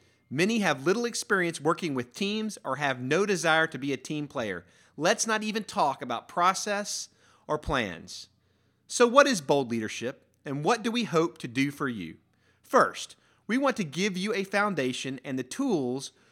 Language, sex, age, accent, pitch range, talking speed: English, male, 30-49, American, 125-190 Hz, 180 wpm